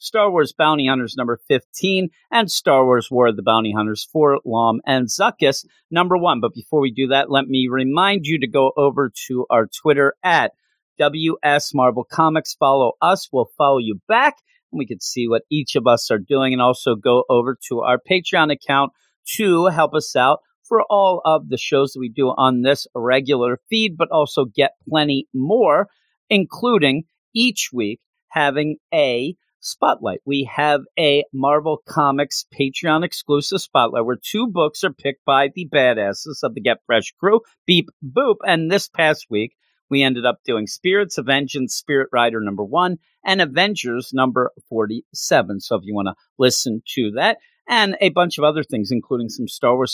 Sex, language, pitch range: male, English, 125-160 Hz